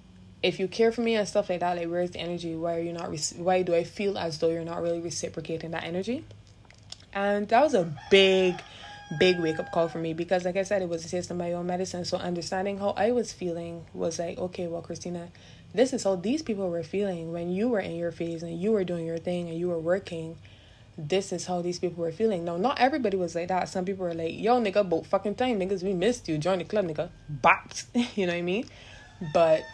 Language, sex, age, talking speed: English, female, 20-39, 250 wpm